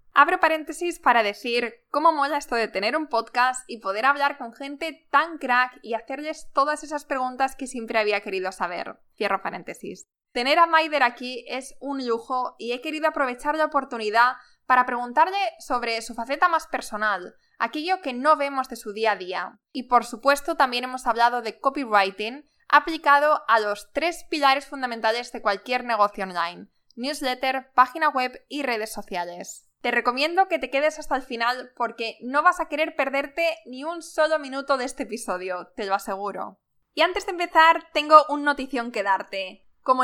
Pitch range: 235-300 Hz